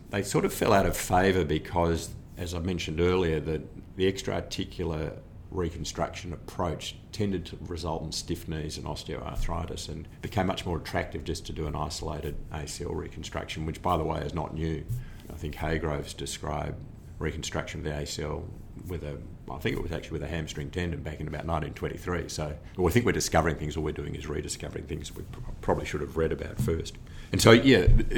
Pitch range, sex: 75-90 Hz, male